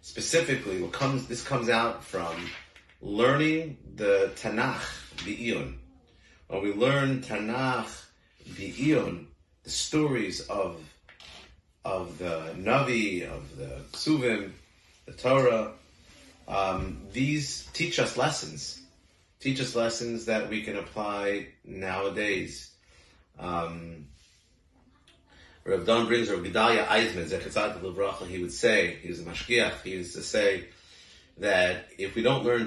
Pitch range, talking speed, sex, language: 85-115 Hz, 125 wpm, male, English